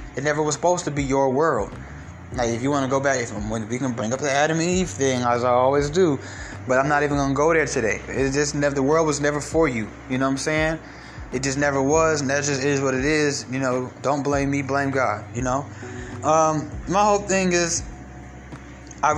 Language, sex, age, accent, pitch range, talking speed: English, male, 20-39, American, 125-150 Hz, 240 wpm